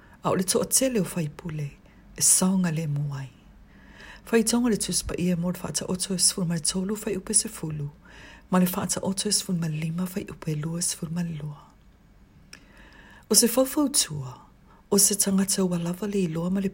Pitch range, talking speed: 160-210 Hz, 190 wpm